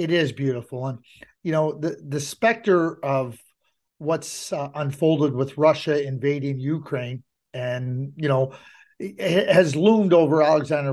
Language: English